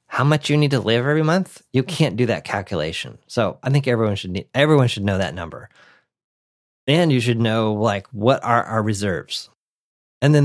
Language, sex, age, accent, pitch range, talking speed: English, male, 30-49, American, 110-140 Hz, 200 wpm